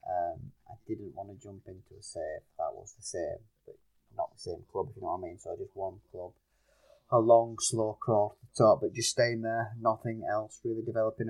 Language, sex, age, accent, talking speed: English, male, 30-49, British, 230 wpm